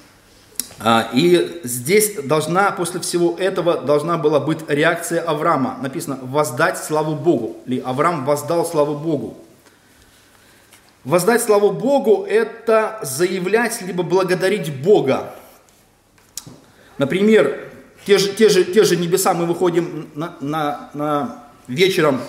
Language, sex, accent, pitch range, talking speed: Russian, male, native, 155-210 Hz, 95 wpm